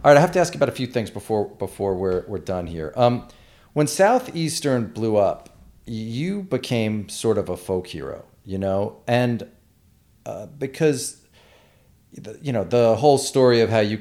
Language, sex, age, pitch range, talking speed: English, male, 40-59, 95-130 Hz, 185 wpm